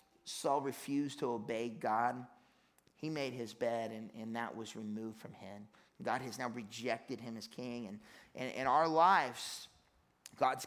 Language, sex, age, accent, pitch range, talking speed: English, male, 30-49, American, 115-140 Hz, 170 wpm